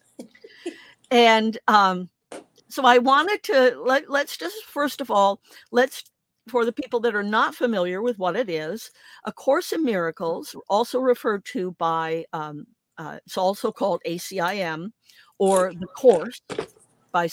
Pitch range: 175-245 Hz